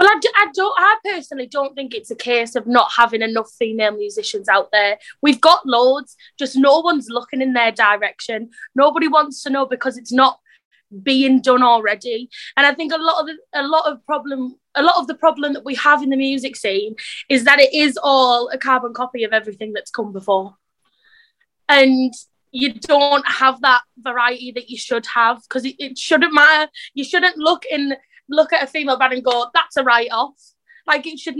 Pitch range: 235-285 Hz